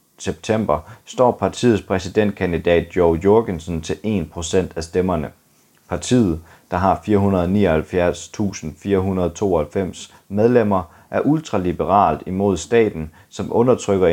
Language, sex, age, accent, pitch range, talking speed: Danish, male, 30-49, native, 85-105 Hz, 90 wpm